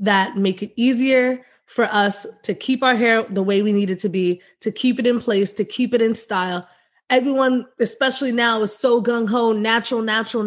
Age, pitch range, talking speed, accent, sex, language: 20-39, 210-255 Hz, 205 wpm, American, female, English